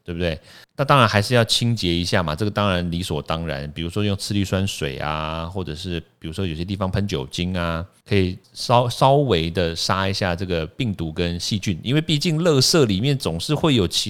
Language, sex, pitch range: Chinese, male, 85-120 Hz